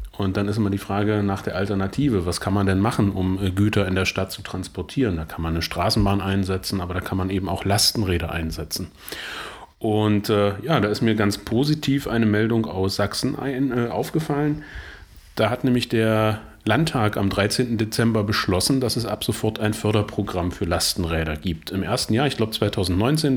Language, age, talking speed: German, 30-49, 185 wpm